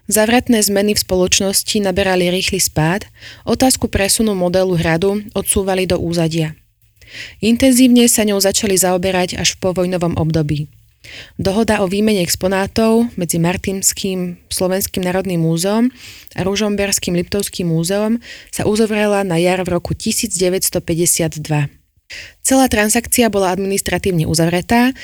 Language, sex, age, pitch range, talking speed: Slovak, female, 20-39, 175-215 Hz, 115 wpm